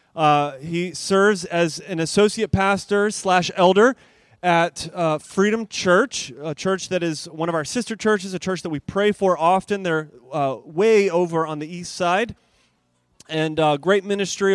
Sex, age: male, 30-49